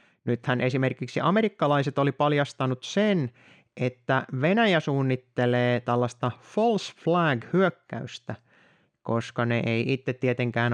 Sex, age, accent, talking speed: male, 30-49, native, 100 wpm